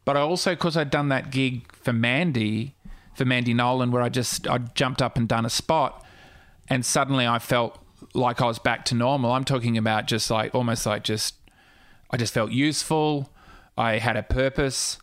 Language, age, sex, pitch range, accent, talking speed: English, 30-49, male, 115-140 Hz, Australian, 195 wpm